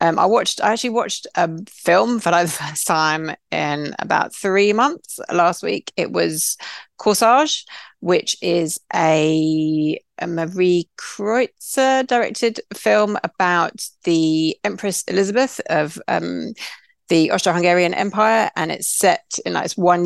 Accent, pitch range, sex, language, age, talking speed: British, 155-200 Hz, female, English, 40-59, 135 wpm